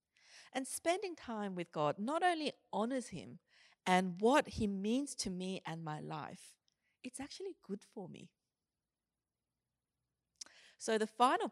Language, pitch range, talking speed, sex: English, 170-255 Hz, 135 wpm, female